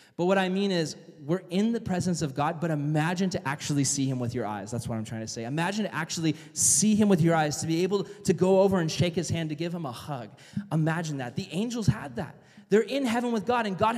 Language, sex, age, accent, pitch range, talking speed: English, male, 20-39, American, 160-220 Hz, 265 wpm